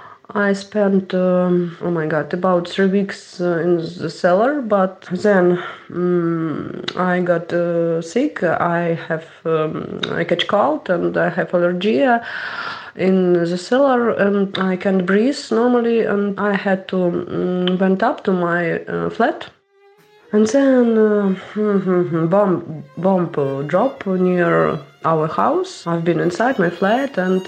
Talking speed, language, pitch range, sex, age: 145 wpm, English, 175-210 Hz, female, 30-49